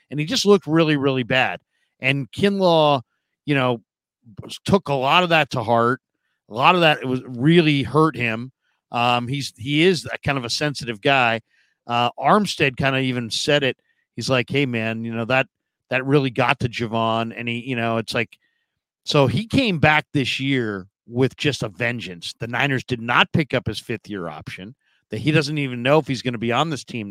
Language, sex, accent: English, male, American